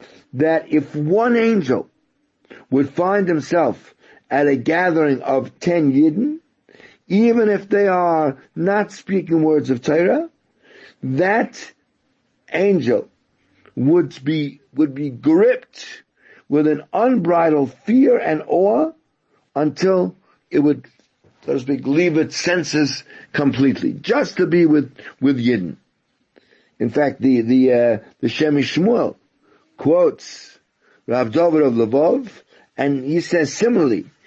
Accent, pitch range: American, 140-195 Hz